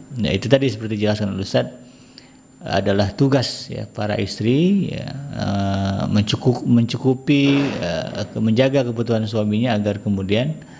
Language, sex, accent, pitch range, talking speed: Indonesian, male, native, 100-130 Hz, 100 wpm